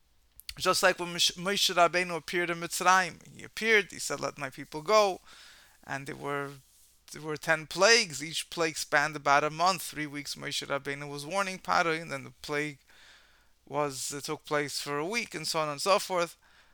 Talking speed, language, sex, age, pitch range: 190 wpm, English, male, 30-49, 145-185 Hz